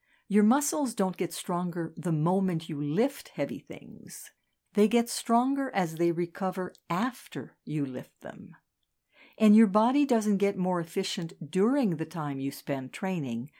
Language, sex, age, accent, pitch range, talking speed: English, female, 60-79, American, 165-220 Hz, 150 wpm